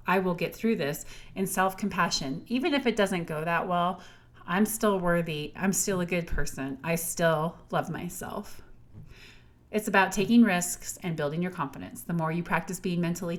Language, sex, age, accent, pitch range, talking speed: English, female, 30-49, American, 175-230 Hz, 180 wpm